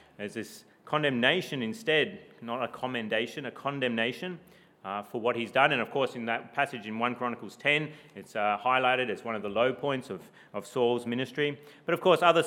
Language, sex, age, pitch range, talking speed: English, male, 30-49, 120-160 Hz, 195 wpm